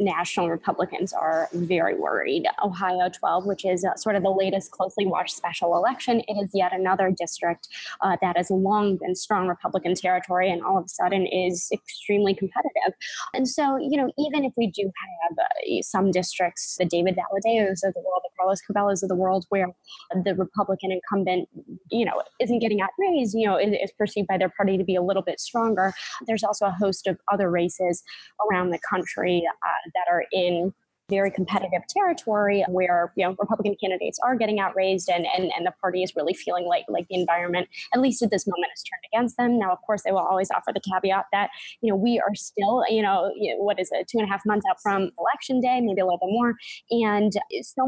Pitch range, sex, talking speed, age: 185-220 Hz, female, 215 wpm, 10-29